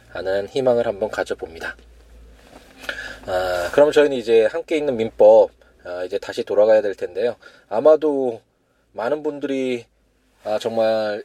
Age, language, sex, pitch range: 20-39, Korean, male, 110-170 Hz